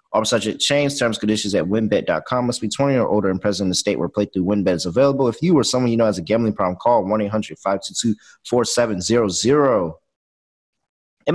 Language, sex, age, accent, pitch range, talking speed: English, male, 20-39, American, 105-160 Hz, 180 wpm